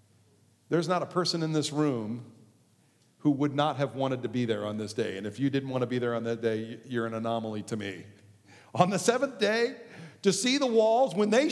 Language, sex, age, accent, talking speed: English, male, 50-69, American, 230 wpm